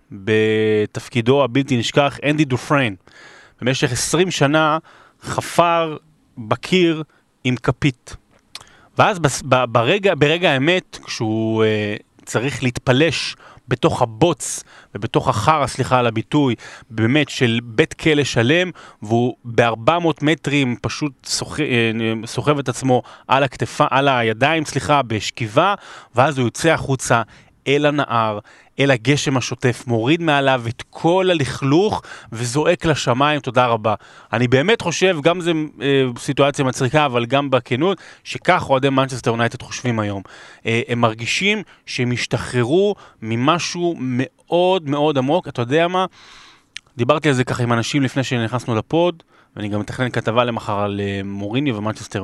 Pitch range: 115-150 Hz